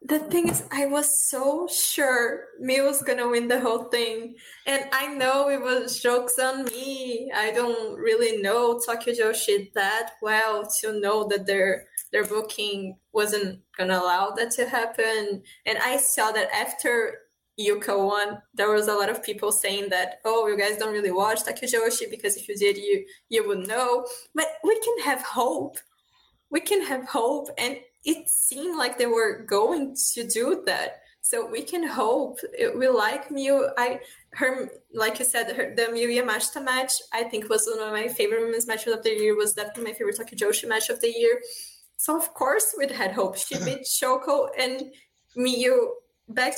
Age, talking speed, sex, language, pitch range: 10-29, 185 wpm, female, English, 215-300 Hz